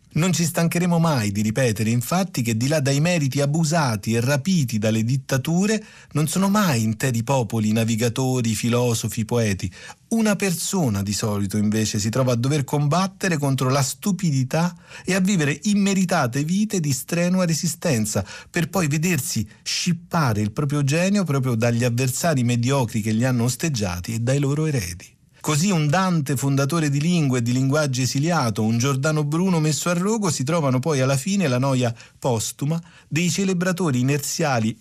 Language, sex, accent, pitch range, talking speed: Italian, male, native, 120-170 Hz, 160 wpm